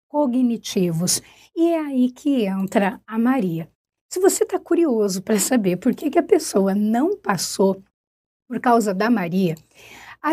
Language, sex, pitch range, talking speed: Portuguese, female, 215-295 Hz, 150 wpm